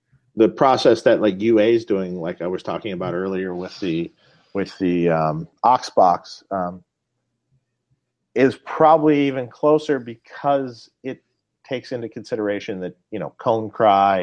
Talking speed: 145 wpm